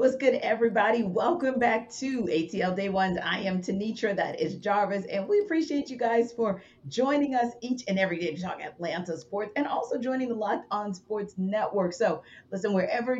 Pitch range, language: 155-215 Hz, English